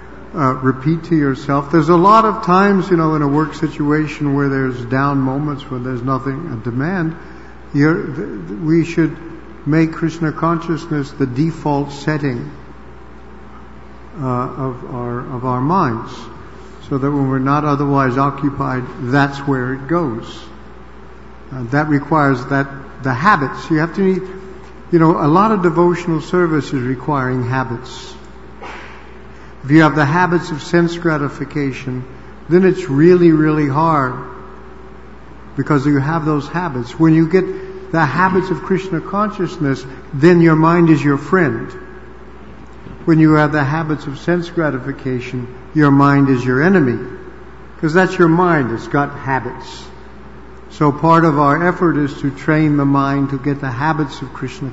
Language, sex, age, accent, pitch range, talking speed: English, male, 50-69, American, 135-165 Hz, 155 wpm